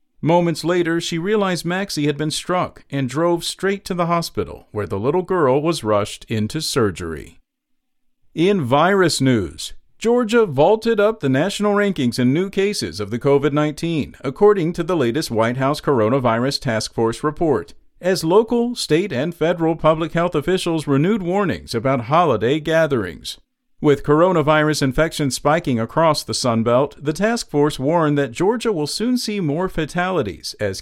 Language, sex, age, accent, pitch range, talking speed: English, male, 50-69, American, 130-180 Hz, 155 wpm